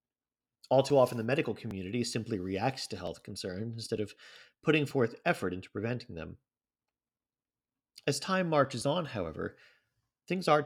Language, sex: English, male